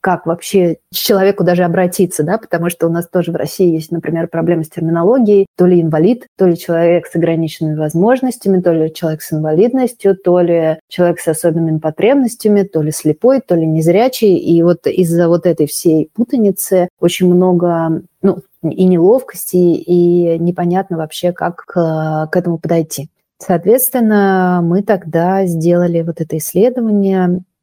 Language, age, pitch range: Russian, 30-49, 170-190 Hz